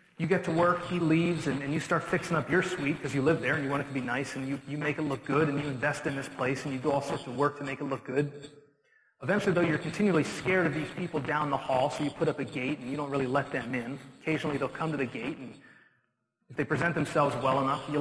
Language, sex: English, male